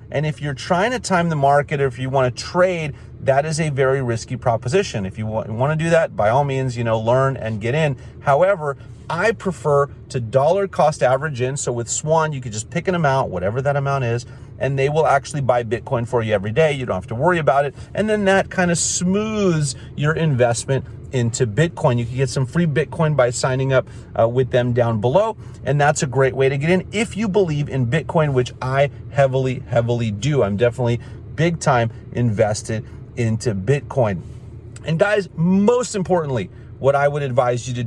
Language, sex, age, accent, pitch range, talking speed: English, male, 30-49, American, 120-160 Hz, 205 wpm